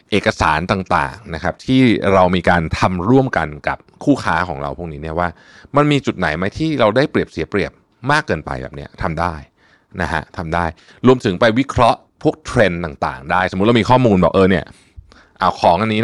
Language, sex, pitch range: Thai, male, 85-115 Hz